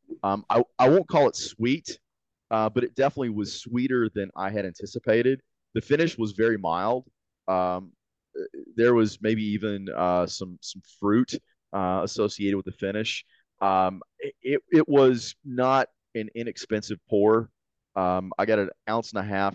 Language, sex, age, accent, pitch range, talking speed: English, male, 30-49, American, 95-115 Hz, 160 wpm